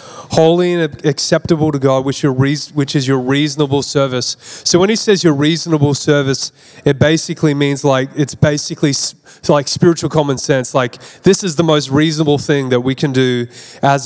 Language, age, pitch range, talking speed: English, 30-49, 140-165 Hz, 170 wpm